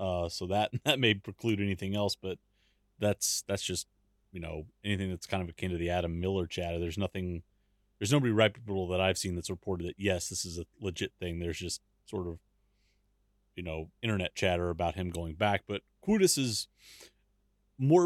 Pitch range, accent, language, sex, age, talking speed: 95-110 Hz, American, English, male, 30-49, 190 wpm